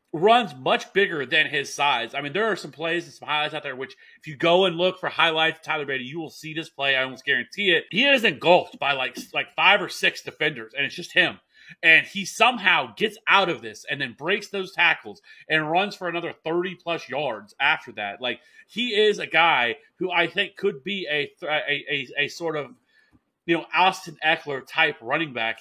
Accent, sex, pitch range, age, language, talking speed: American, male, 140-180 Hz, 30-49, English, 220 wpm